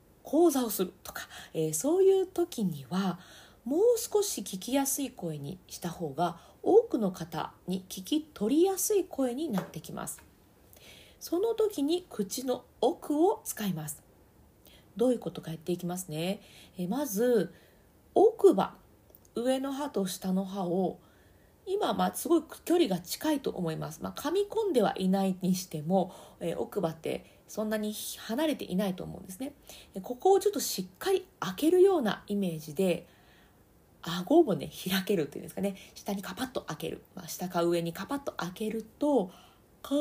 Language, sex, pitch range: Japanese, female, 185-305 Hz